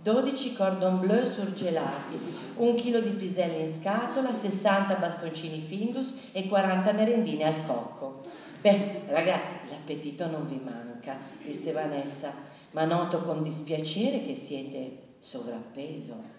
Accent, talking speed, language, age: native, 120 wpm, Italian, 40-59